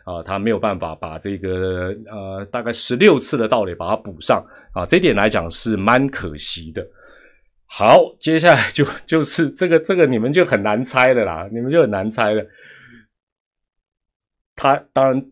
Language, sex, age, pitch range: Chinese, male, 30-49, 105-135 Hz